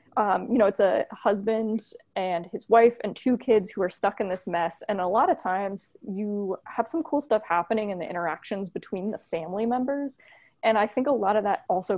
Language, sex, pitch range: English, female, 180-220 Hz